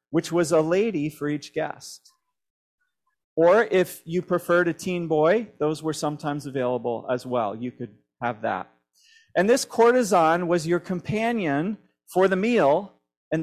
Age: 40-59